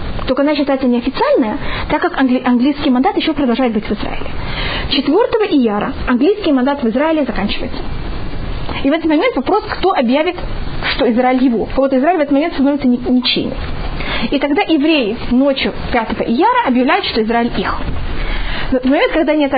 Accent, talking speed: native, 165 wpm